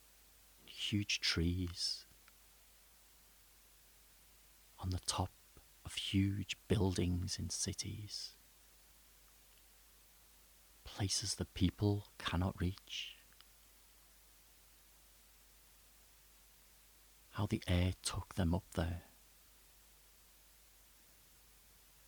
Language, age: English, 40-59